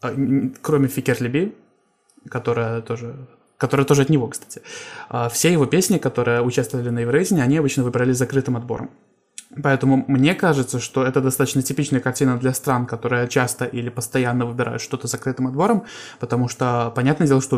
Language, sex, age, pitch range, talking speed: Russian, male, 20-39, 120-140 Hz, 155 wpm